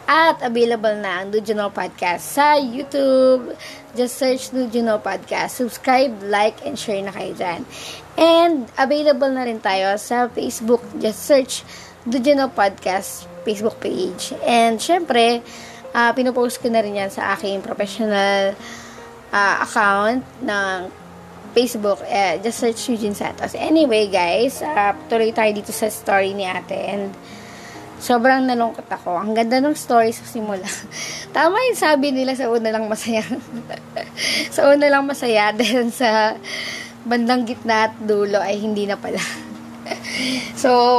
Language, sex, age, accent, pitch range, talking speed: Filipino, female, 20-39, native, 205-255 Hz, 145 wpm